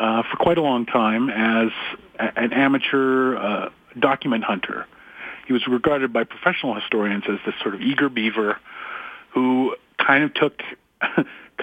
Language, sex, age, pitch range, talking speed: English, male, 40-59, 115-145 Hz, 150 wpm